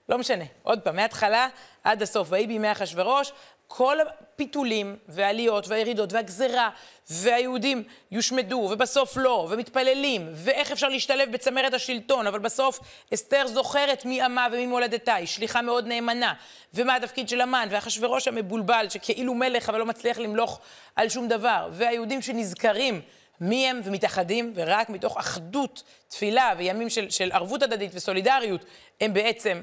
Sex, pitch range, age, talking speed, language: female, 195-250 Hz, 30-49, 140 wpm, Hebrew